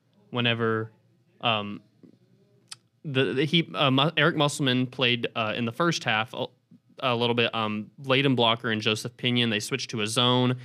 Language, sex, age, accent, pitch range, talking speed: English, male, 20-39, American, 110-135 Hz, 165 wpm